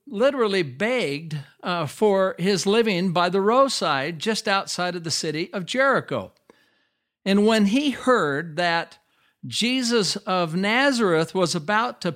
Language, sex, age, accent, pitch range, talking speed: English, male, 60-79, American, 170-225 Hz, 135 wpm